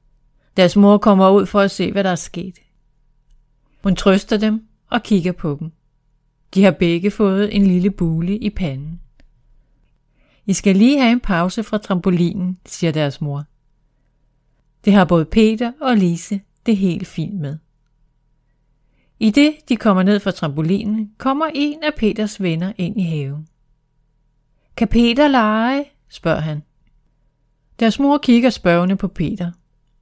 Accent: native